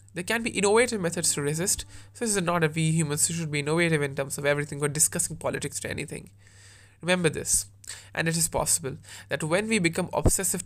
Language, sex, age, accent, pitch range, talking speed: English, male, 20-39, Indian, 100-170 Hz, 210 wpm